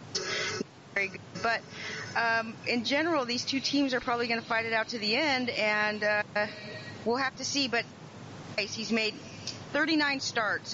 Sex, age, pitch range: female, 40-59, 205-255 Hz